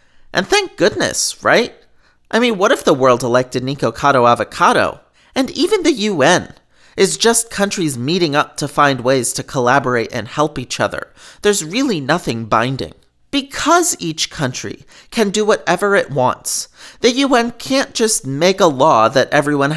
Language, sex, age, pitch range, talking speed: English, male, 40-59, 135-220 Hz, 160 wpm